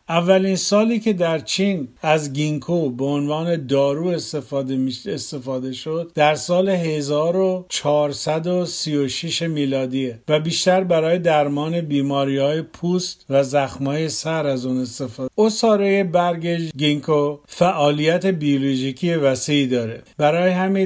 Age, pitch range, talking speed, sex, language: 50-69, 135-160 Hz, 120 wpm, male, Persian